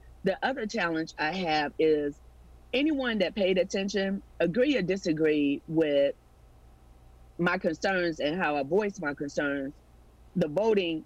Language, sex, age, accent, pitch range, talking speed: English, female, 40-59, American, 155-195 Hz, 130 wpm